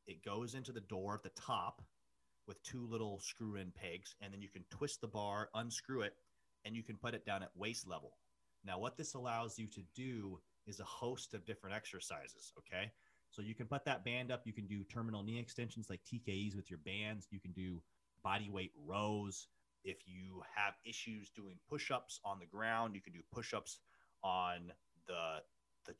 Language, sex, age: English, male, 30-49